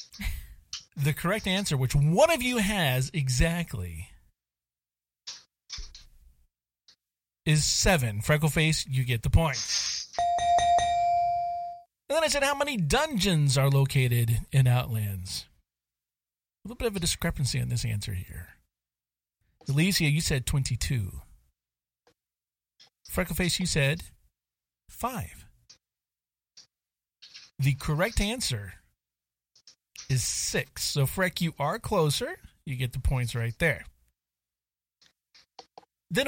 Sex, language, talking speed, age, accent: male, English, 105 wpm, 40-59, American